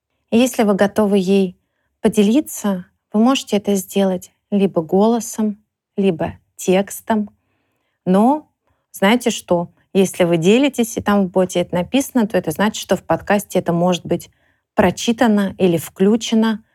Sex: female